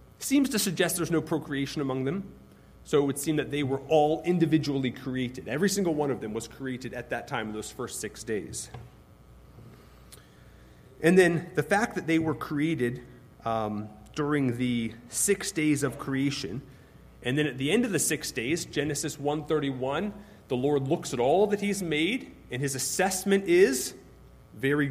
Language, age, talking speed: English, 30-49, 175 wpm